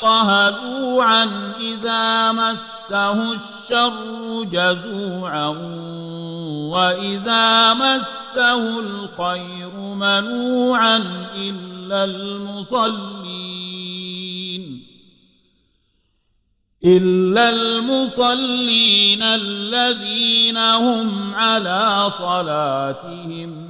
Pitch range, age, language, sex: 165-225 Hz, 50-69, Arabic, male